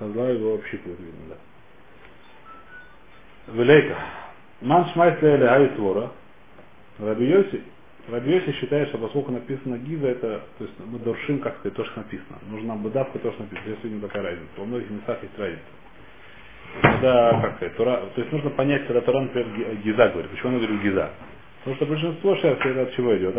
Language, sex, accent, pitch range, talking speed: Russian, male, native, 115-155 Hz, 155 wpm